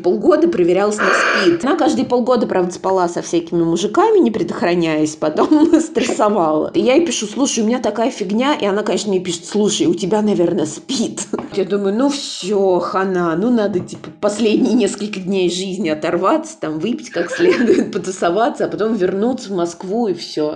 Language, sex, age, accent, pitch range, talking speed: Russian, female, 20-39, native, 185-295 Hz, 170 wpm